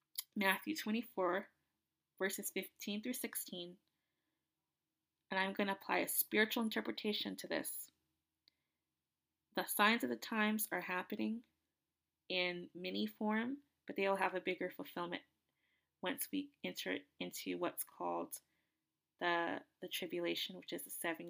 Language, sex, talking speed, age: English, female, 130 wpm, 20-39